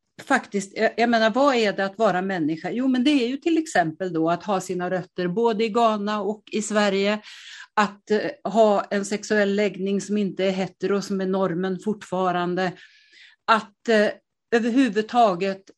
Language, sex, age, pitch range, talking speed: Swedish, female, 50-69, 185-235 Hz, 165 wpm